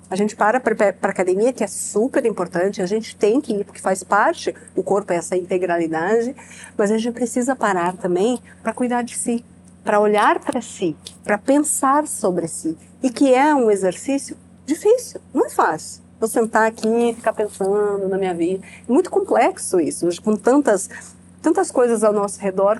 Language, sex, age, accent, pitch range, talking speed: Portuguese, female, 50-69, Brazilian, 195-255 Hz, 180 wpm